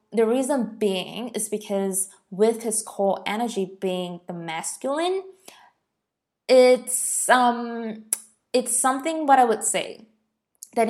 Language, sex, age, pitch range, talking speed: English, female, 20-39, 190-235 Hz, 115 wpm